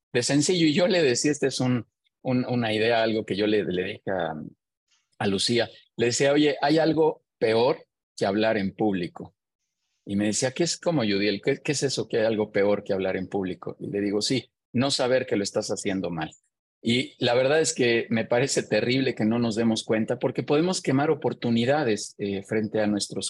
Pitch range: 100-140 Hz